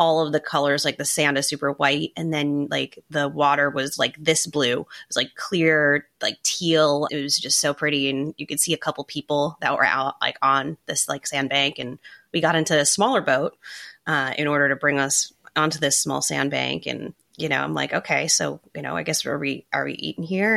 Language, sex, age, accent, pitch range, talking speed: English, female, 20-39, American, 145-165 Hz, 235 wpm